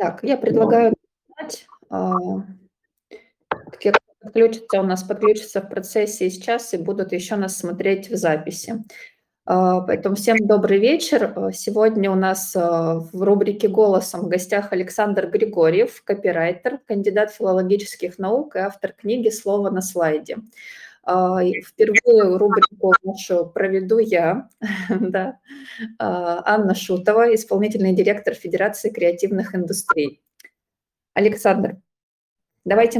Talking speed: 105 wpm